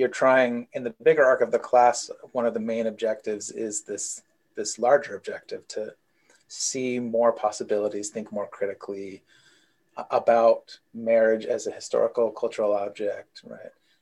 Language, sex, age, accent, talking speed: English, male, 30-49, American, 145 wpm